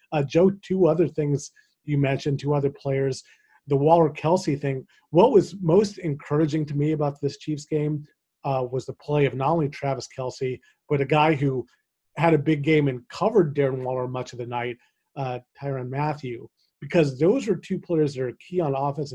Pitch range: 140-170 Hz